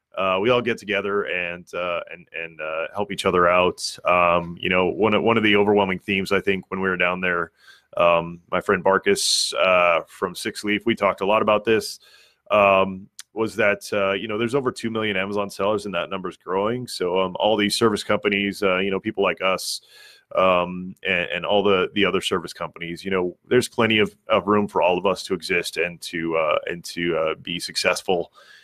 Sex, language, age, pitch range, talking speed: male, English, 30-49, 90-105 Hz, 215 wpm